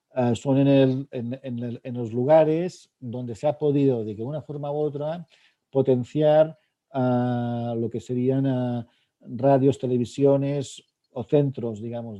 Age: 50-69